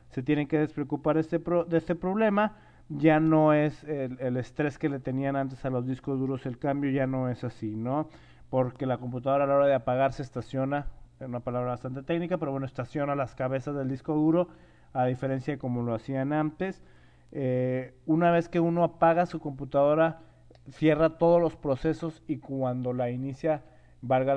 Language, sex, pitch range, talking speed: Spanish, male, 135-160 Hz, 185 wpm